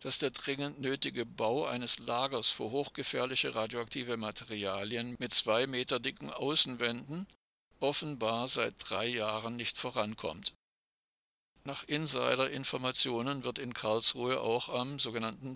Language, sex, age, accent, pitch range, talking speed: German, male, 50-69, German, 115-135 Hz, 115 wpm